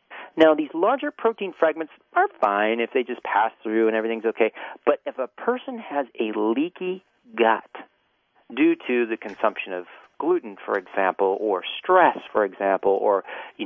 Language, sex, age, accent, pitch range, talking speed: English, male, 40-59, American, 110-175 Hz, 165 wpm